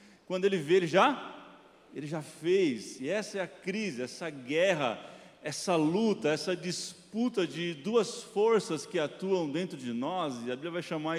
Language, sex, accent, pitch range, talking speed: Portuguese, male, Brazilian, 145-190 Hz, 170 wpm